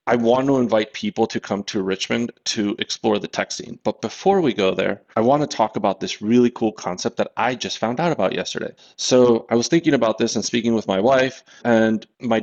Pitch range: 100-125 Hz